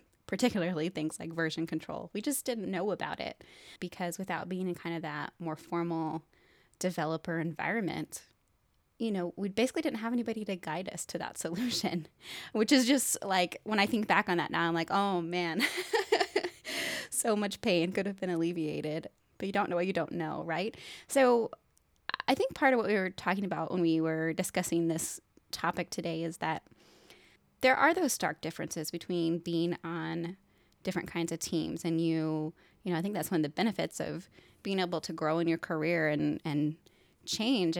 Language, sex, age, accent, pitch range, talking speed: English, female, 20-39, American, 165-200 Hz, 190 wpm